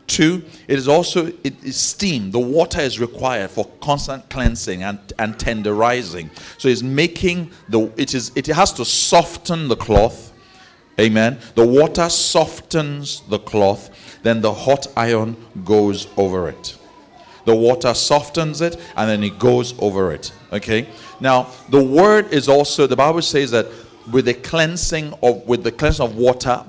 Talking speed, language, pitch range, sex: 160 wpm, English, 110-140 Hz, male